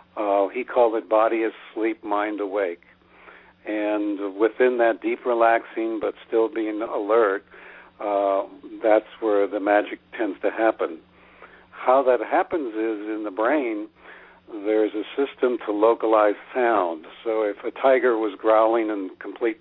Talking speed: 140 wpm